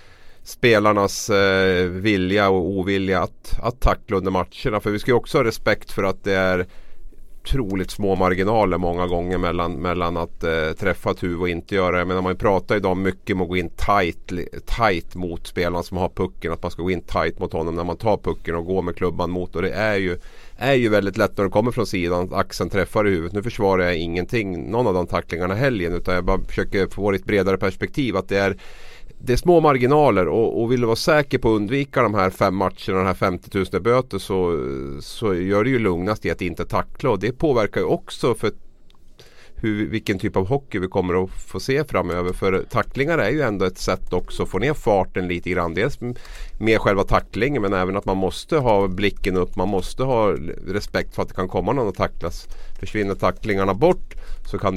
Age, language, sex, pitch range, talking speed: 30-49, Swedish, male, 90-105 Hz, 220 wpm